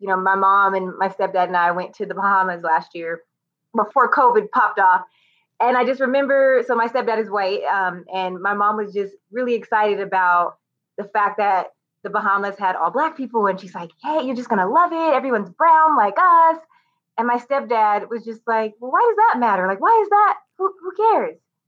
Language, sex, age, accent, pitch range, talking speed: English, female, 20-39, American, 190-240 Hz, 215 wpm